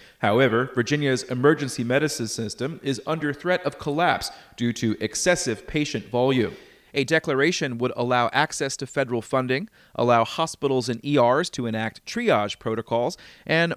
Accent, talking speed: American, 140 wpm